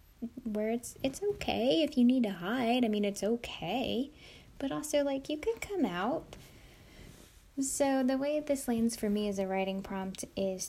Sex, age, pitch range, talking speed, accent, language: female, 10-29, 190-235 Hz, 180 wpm, American, English